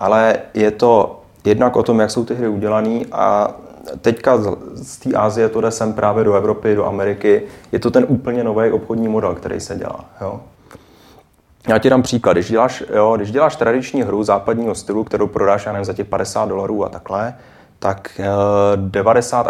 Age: 30-49